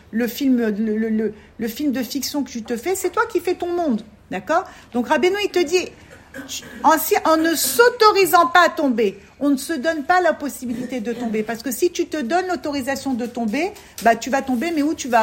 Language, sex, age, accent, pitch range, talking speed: French, female, 50-69, French, 230-335 Hz, 235 wpm